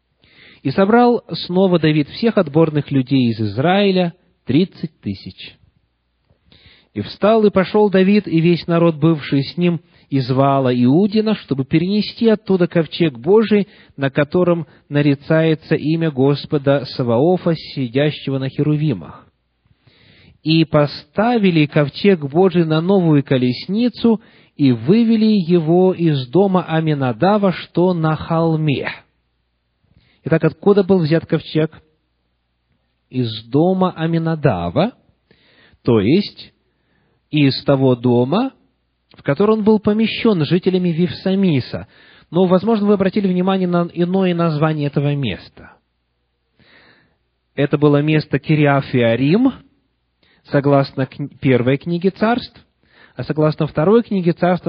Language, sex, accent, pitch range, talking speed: Russian, male, native, 135-185 Hz, 110 wpm